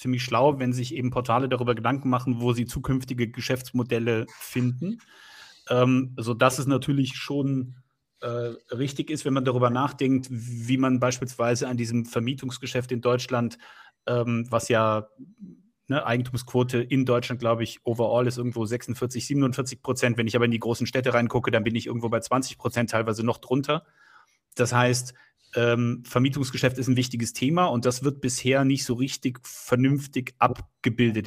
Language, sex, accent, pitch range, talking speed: German, male, German, 120-130 Hz, 155 wpm